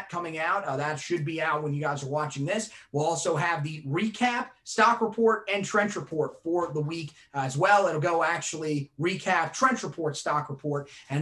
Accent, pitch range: American, 150-185 Hz